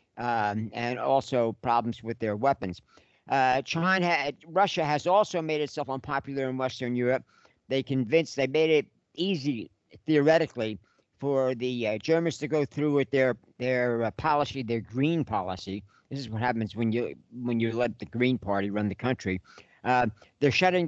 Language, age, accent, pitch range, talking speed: English, 60-79, American, 115-145 Hz, 165 wpm